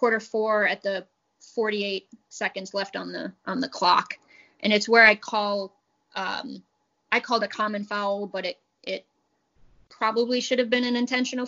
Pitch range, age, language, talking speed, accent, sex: 200-230 Hz, 20-39, English, 165 wpm, American, female